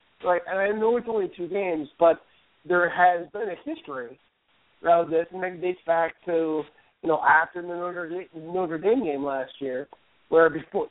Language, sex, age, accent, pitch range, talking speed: English, male, 50-69, American, 155-180 Hz, 180 wpm